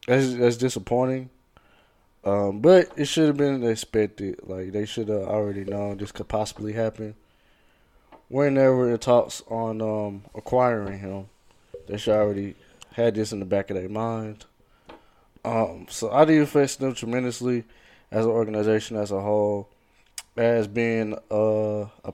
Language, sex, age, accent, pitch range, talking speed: English, male, 20-39, American, 100-120 Hz, 150 wpm